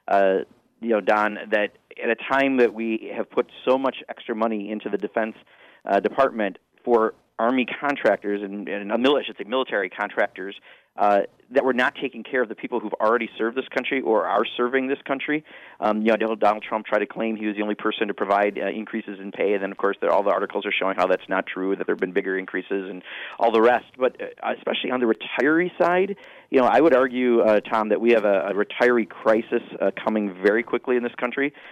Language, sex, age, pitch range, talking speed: English, male, 40-59, 105-120 Hz, 225 wpm